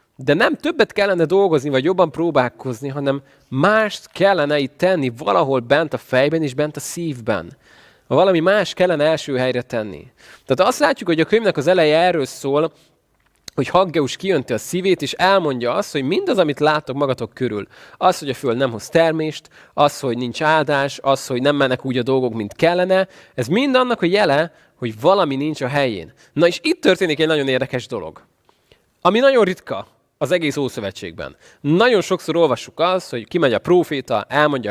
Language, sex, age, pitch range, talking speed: Hungarian, male, 20-39, 130-175 Hz, 180 wpm